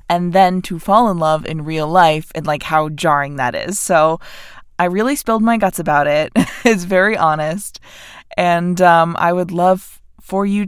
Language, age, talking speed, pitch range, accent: English, 20-39, 185 wpm, 160-195 Hz, American